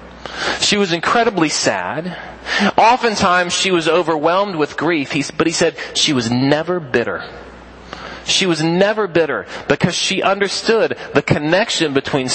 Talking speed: 130 wpm